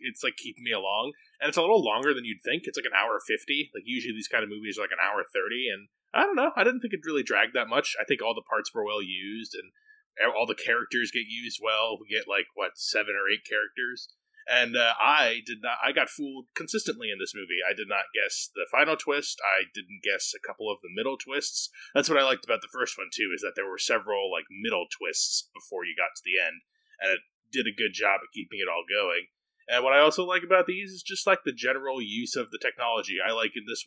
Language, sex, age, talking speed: English, male, 20-39, 260 wpm